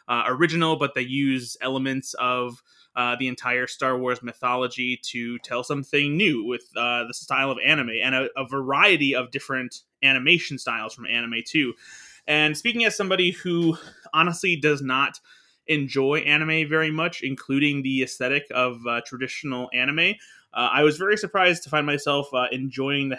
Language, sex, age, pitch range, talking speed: English, male, 20-39, 130-155 Hz, 165 wpm